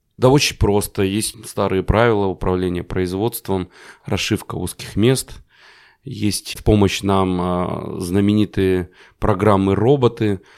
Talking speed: 100 wpm